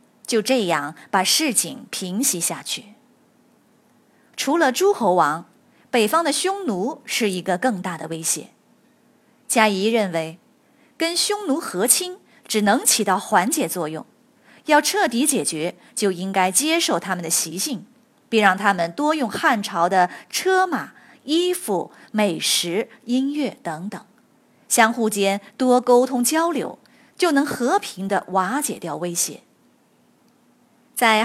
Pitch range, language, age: 185-270 Hz, Chinese, 20-39